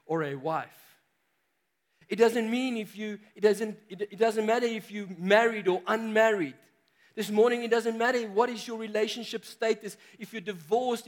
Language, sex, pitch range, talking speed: English, male, 170-225 Hz, 175 wpm